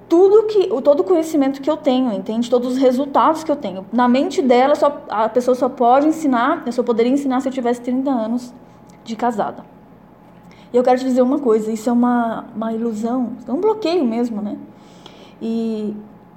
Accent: Brazilian